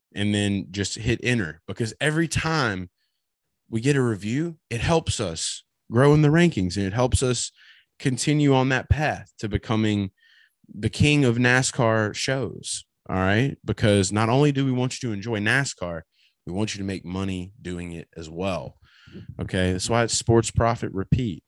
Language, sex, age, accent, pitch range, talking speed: English, male, 20-39, American, 90-120 Hz, 175 wpm